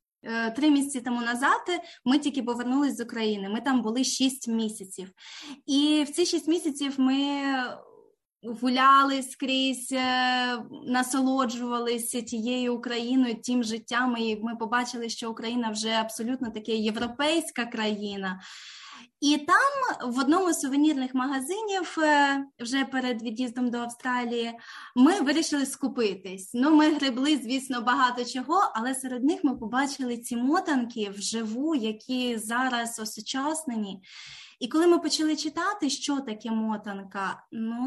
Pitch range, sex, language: 230-280 Hz, female, Ukrainian